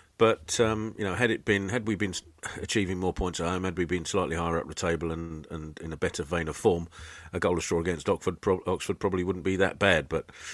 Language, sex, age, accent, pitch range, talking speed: English, male, 40-59, British, 80-95 Hz, 255 wpm